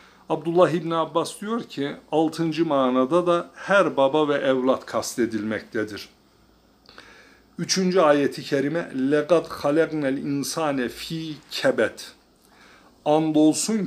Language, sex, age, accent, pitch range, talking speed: Turkish, male, 60-79, native, 120-155 Hz, 100 wpm